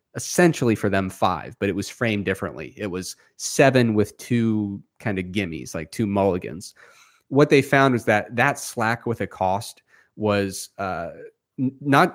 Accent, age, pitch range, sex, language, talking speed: American, 30-49, 100-125 Hz, male, English, 165 wpm